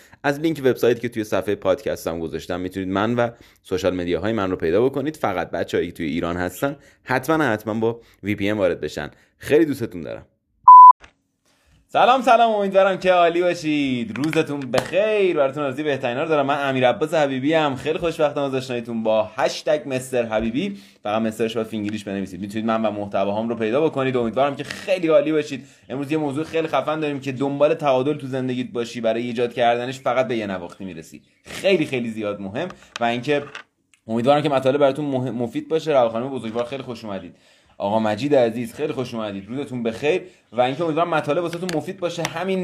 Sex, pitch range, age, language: male, 110-145 Hz, 30-49, English